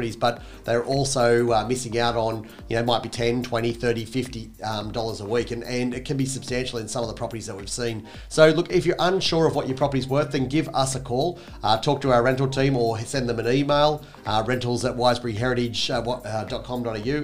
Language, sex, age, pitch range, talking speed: English, male, 40-59, 115-135 Hz, 225 wpm